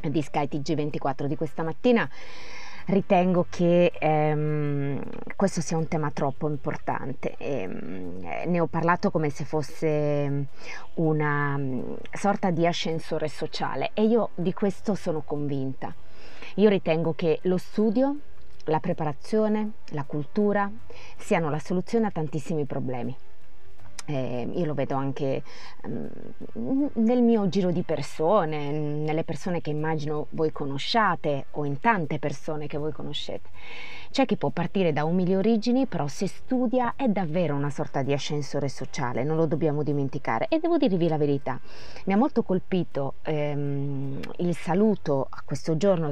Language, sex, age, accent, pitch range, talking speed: Italian, female, 20-39, native, 145-190 Hz, 135 wpm